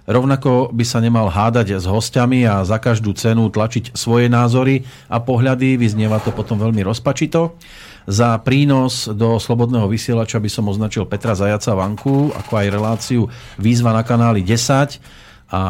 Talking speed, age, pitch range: 150 wpm, 40-59, 100-120 Hz